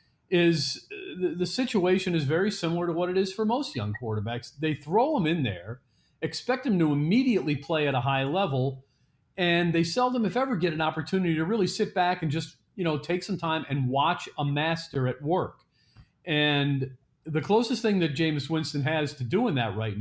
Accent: American